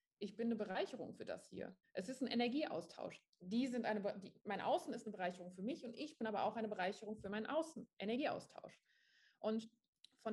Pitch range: 205-235 Hz